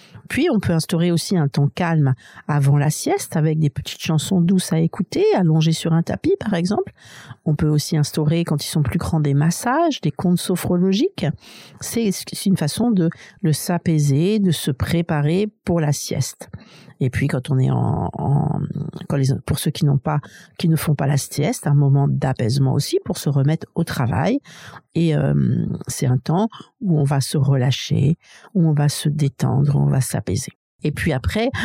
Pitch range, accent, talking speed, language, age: 145-175 Hz, French, 190 wpm, French, 50-69